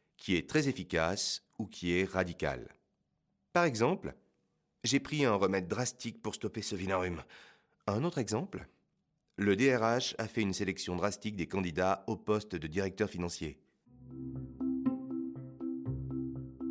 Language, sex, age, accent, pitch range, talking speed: French, male, 40-59, French, 80-115 Hz, 130 wpm